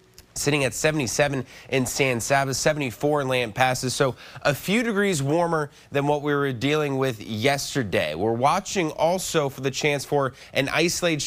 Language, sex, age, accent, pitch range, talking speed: English, male, 20-39, American, 115-145 Hz, 160 wpm